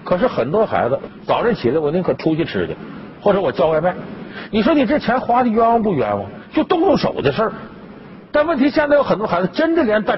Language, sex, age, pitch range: Chinese, male, 50-69, 195-270 Hz